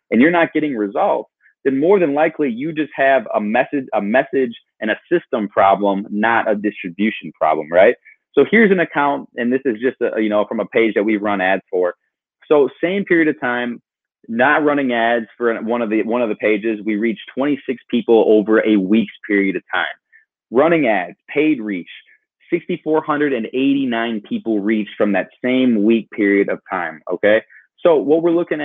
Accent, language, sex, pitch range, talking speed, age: American, English, male, 110-150 Hz, 185 wpm, 20-39